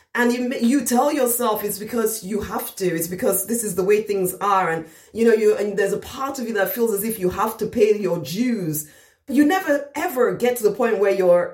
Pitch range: 165-255 Hz